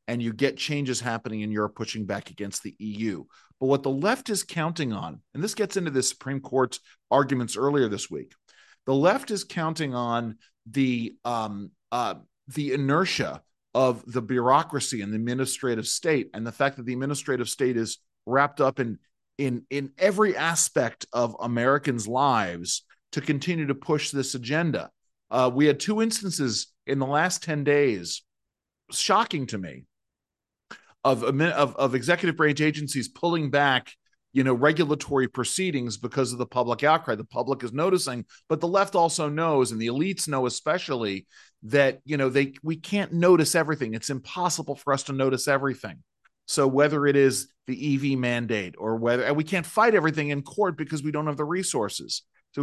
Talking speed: 175 wpm